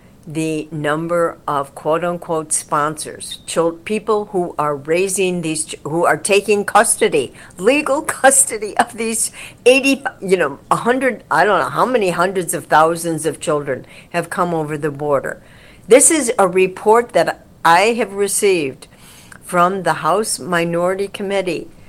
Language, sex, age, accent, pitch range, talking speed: English, female, 60-79, American, 165-220 Hz, 140 wpm